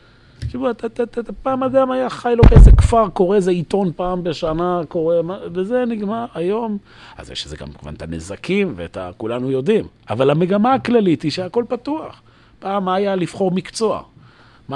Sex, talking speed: male, 180 wpm